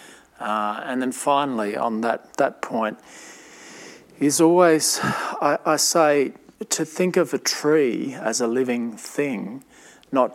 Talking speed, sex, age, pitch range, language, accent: 135 wpm, male, 40-59, 110-135 Hz, English, Australian